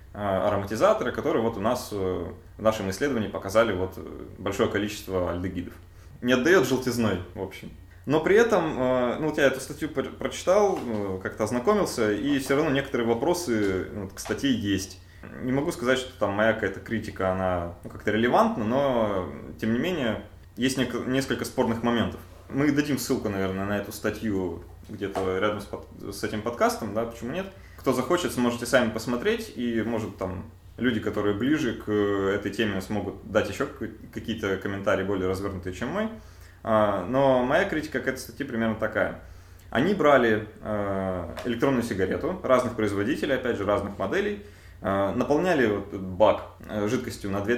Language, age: Russian, 20-39